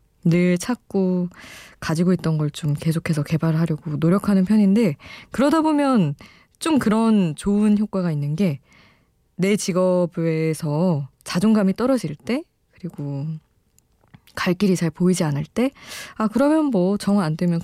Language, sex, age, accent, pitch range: Korean, female, 20-39, native, 155-215 Hz